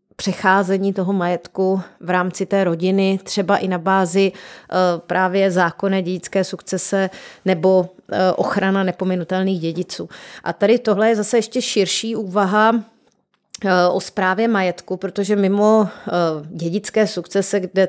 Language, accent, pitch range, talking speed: Czech, native, 180-200 Hz, 115 wpm